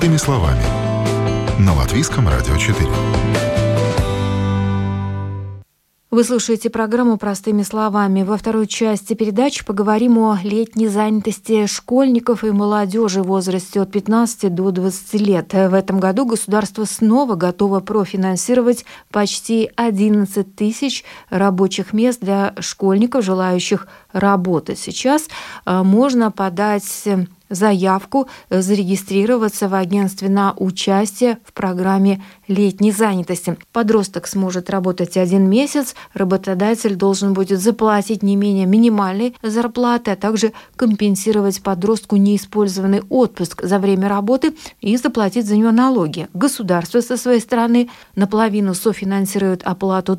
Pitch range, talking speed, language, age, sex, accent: 190-225 Hz, 105 wpm, Russian, 30-49, female, native